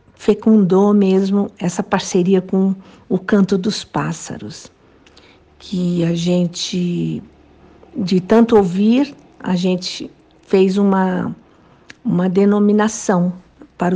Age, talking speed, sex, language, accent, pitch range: 50-69, 95 wpm, female, Portuguese, Brazilian, 185-255 Hz